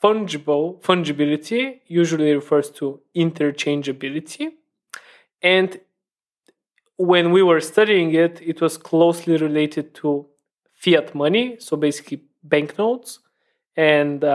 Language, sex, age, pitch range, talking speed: English, male, 20-39, 150-190 Hz, 95 wpm